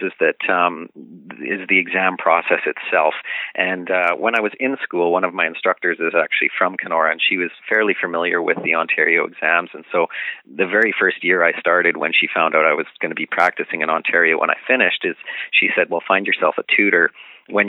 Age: 40-59